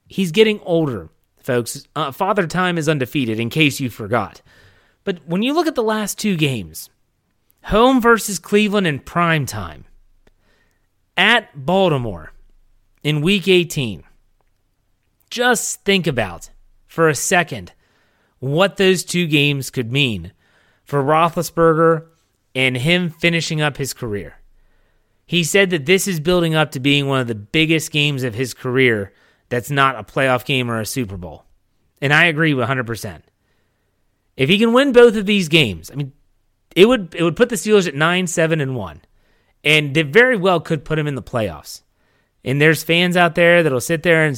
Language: English